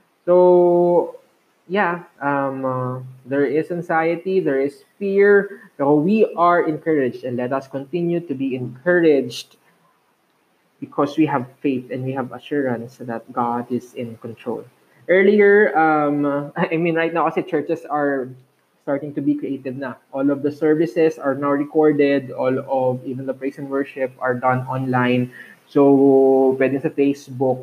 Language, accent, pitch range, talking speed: Filipino, native, 130-155 Hz, 150 wpm